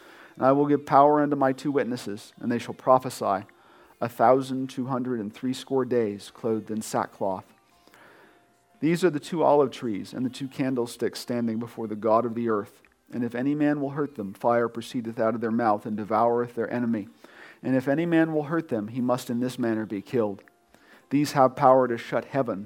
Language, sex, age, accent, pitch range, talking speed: English, male, 40-59, American, 115-135 Hz, 205 wpm